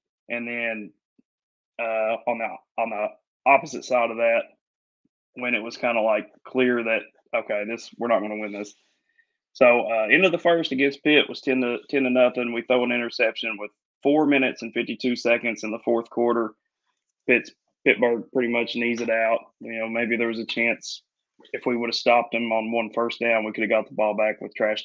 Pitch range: 115-135 Hz